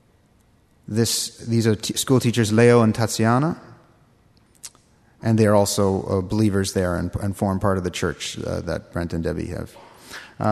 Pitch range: 100-125 Hz